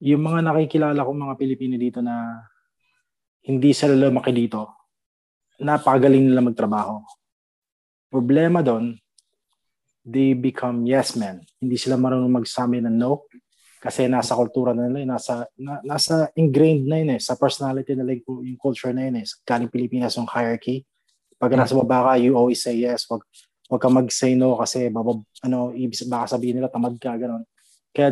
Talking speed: 155 wpm